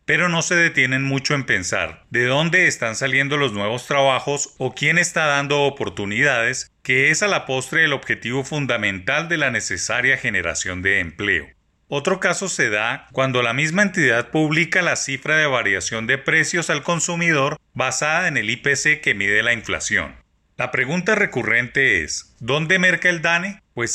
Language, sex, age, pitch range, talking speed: Spanish, male, 30-49, 125-165 Hz, 170 wpm